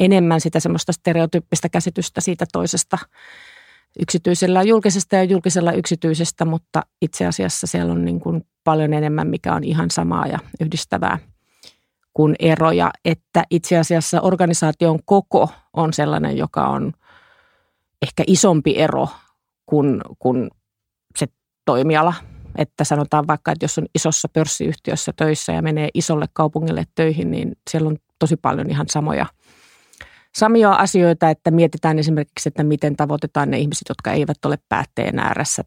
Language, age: Finnish, 30-49